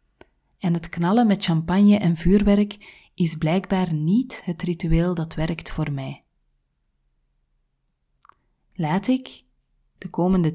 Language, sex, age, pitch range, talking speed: Dutch, female, 30-49, 155-195 Hz, 115 wpm